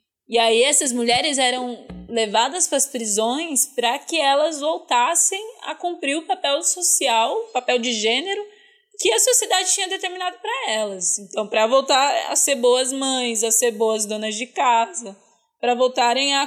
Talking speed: 165 wpm